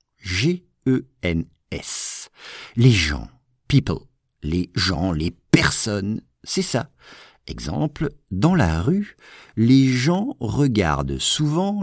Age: 50-69